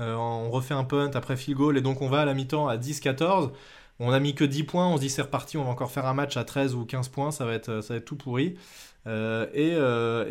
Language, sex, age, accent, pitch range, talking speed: French, male, 20-39, French, 130-165 Hz, 305 wpm